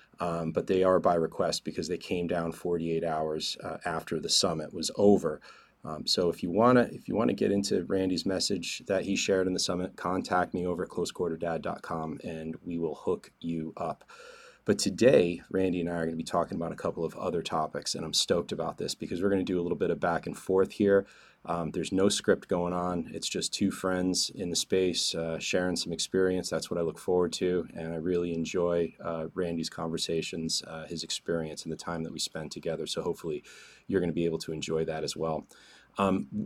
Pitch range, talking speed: 80-90 Hz, 215 wpm